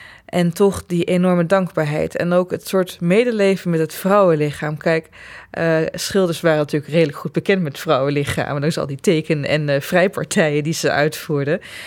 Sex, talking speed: female, 170 wpm